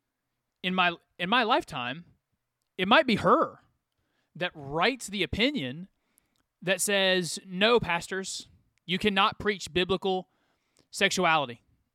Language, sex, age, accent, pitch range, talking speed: English, male, 30-49, American, 155-210 Hz, 110 wpm